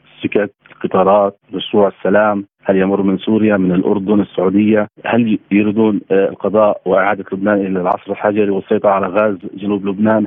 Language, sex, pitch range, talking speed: Arabic, male, 100-115 Hz, 140 wpm